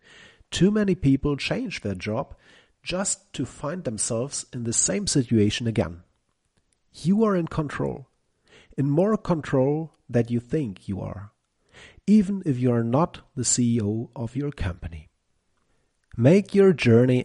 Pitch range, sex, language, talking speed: 115-160 Hz, male, English, 140 wpm